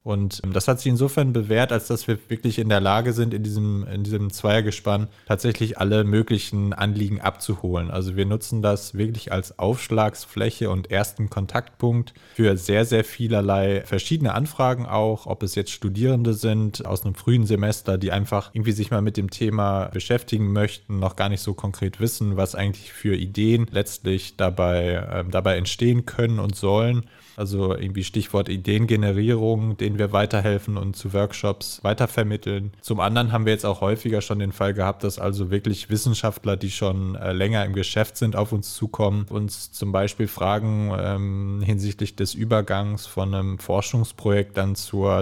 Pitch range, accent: 100-110 Hz, German